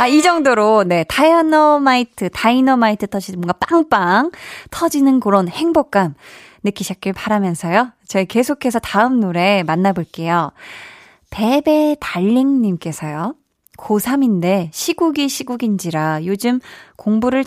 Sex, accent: female, native